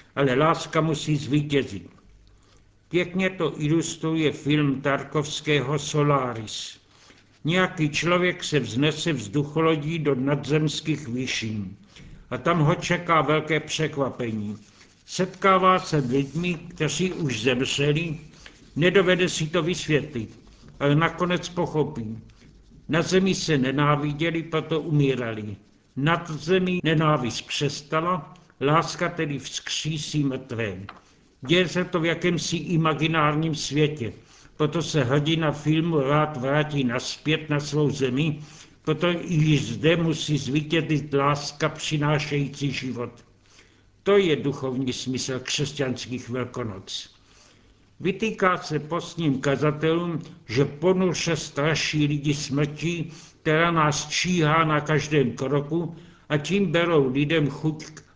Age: 70-89